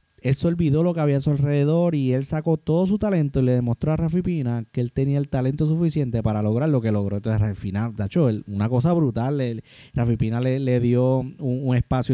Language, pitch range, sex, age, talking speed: Spanish, 120-160 Hz, male, 20-39, 215 wpm